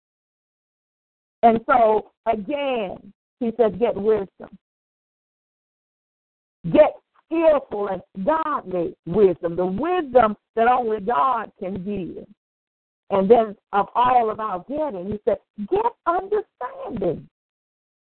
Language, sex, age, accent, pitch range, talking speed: English, female, 50-69, American, 190-260 Hz, 95 wpm